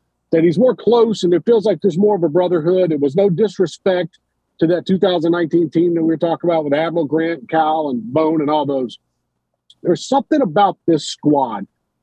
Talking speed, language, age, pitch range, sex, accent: 205 wpm, English, 50-69, 160-200 Hz, male, American